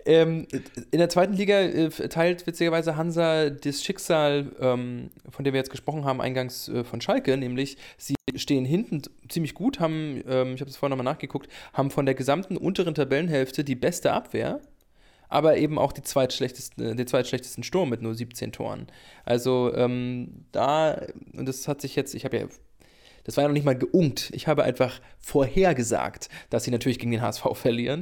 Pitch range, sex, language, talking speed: 125-155 Hz, male, English, 180 wpm